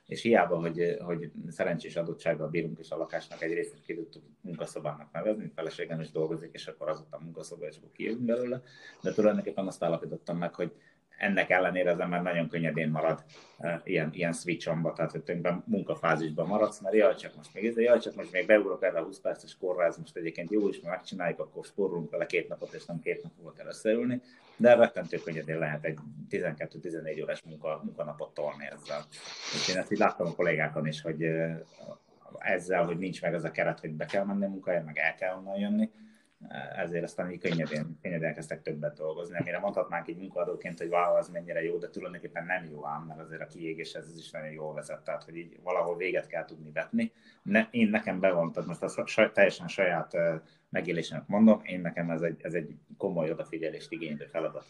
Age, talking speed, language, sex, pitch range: 30-49, 195 wpm, Hungarian, male, 80-110 Hz